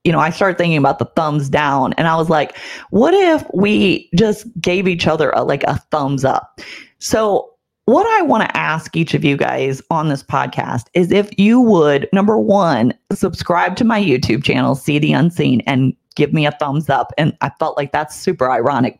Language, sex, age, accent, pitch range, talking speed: English, female, 30-49, American, 155-235 Hz, 200 wpm